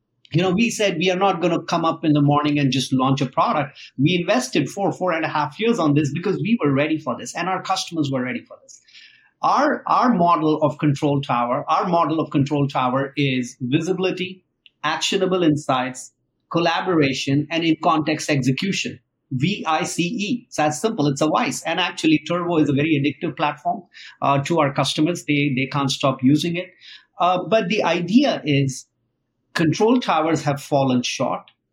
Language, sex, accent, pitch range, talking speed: English, male, Indian, 140-175 Hz, 190 wpm